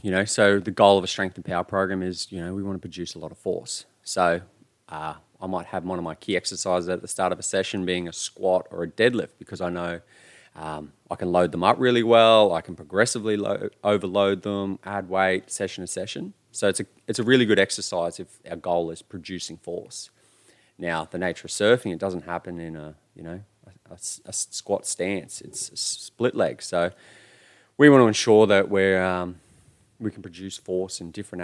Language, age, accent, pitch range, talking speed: English, 20-39, Australian, 90-105 Hz, 220 wpm